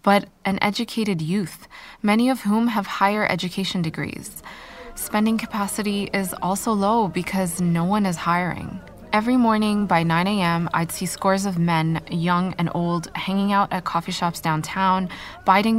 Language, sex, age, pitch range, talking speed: English, female, 20-39, 170-205 Hz, 150 wpm